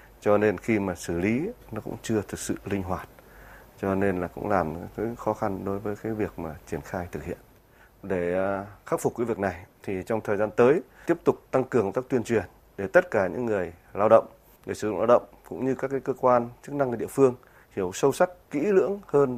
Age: 20-39